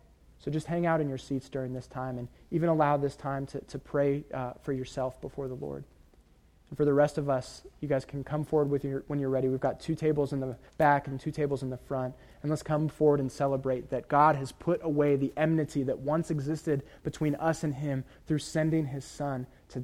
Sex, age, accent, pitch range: male, 20-39, American, 115-145 Hz